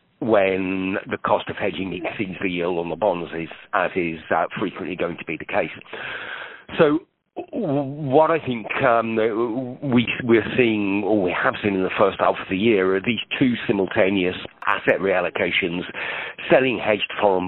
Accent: British